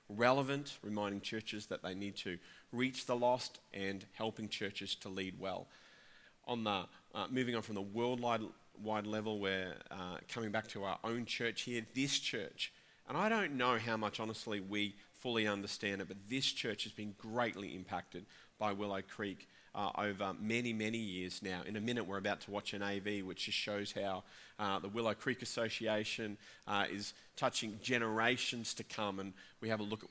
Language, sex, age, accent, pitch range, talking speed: English, male, 30-49, Australian, 100-115 Hz, 185 wpm